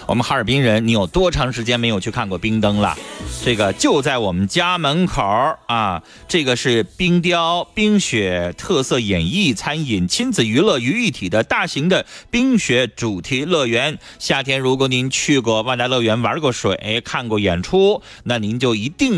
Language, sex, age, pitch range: Chinese, male, 30-49, 110-165 Hz